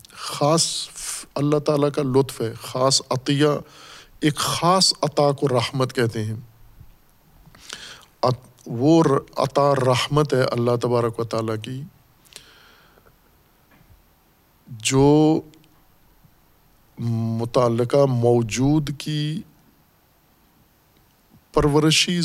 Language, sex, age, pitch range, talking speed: Urdu, male, 50-69, 120-145 Hz, 80 wpm